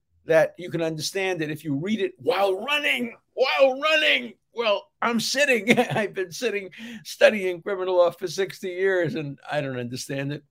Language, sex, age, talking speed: English, male, 50-69, 170 wpm